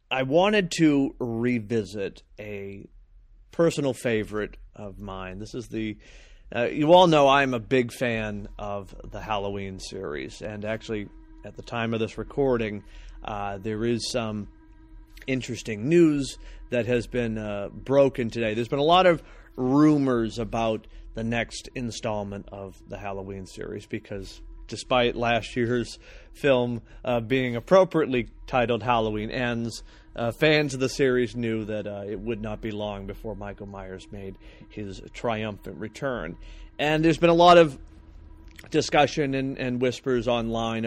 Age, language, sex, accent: 30-49, English, male, American